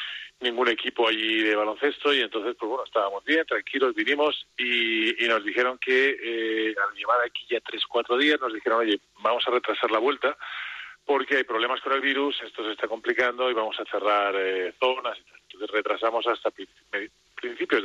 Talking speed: 180 wpm